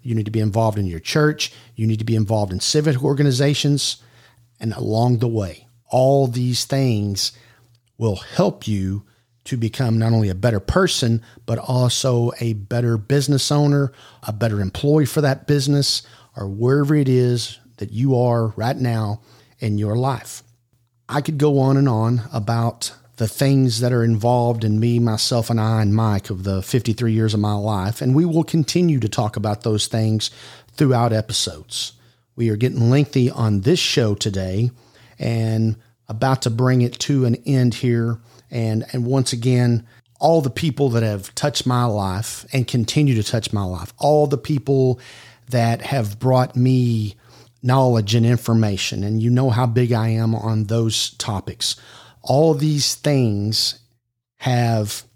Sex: male